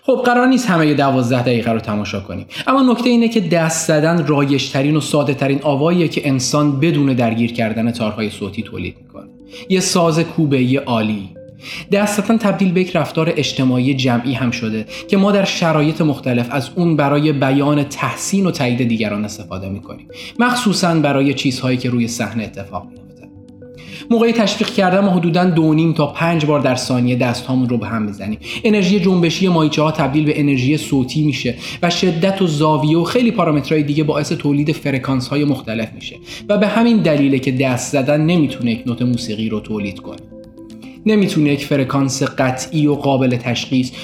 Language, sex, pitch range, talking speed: Persian, male, 125-170 Hz, 170 wpm